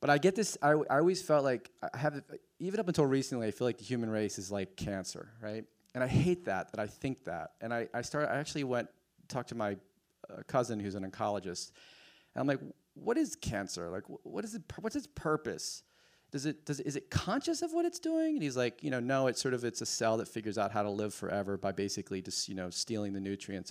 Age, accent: 30-49, American